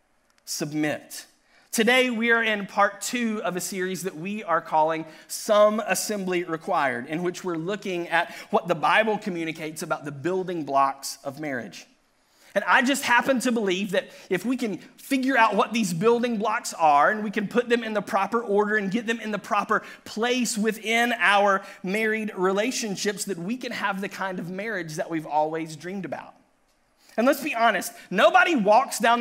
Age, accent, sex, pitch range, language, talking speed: 30-49, American, male, 185-255 Hz, English, 185 wpm